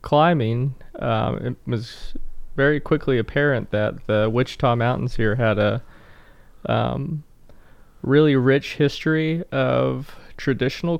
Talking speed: 110 wpm